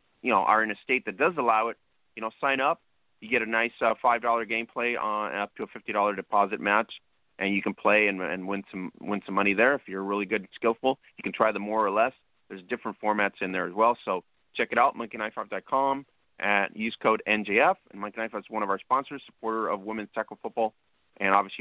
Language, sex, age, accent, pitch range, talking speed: English, male, 30-49, American, 105-125 Hz, 235 wpm